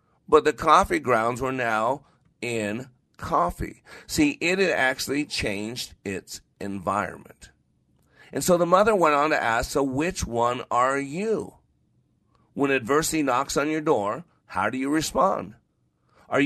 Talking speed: 140 wpm